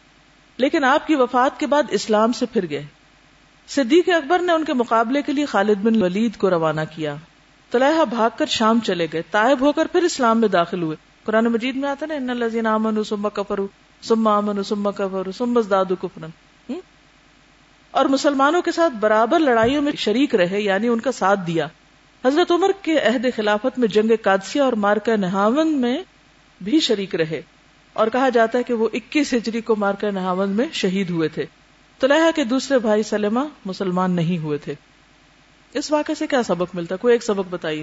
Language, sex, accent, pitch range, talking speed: English, female, Indian, 195-260 Hz, 170 wpm